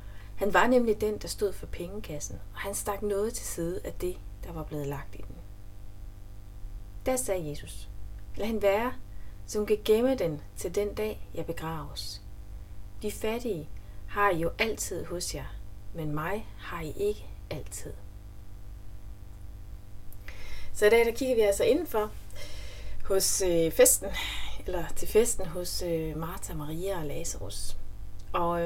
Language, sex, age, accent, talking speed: Danish, female, 30-49, native, 145 wpm